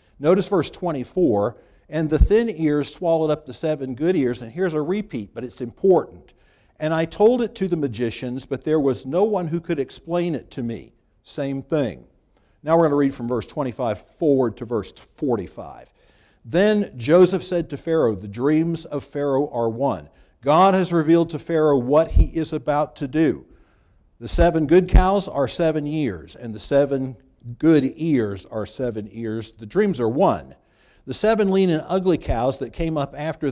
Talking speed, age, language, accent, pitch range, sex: 185 wpm, 60-79, English, American, 125-165 Hz, male